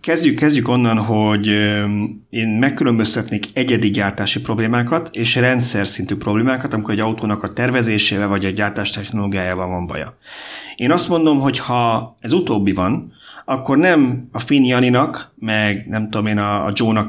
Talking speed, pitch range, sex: 145 wpm, 105-125 Hz, male